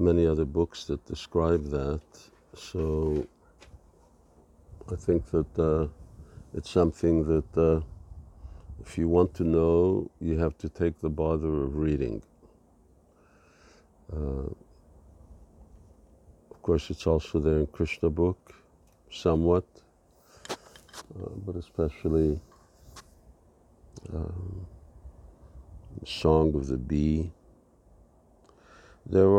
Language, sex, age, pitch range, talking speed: English, male, 50-69, 75-90 Hz, 95 wpm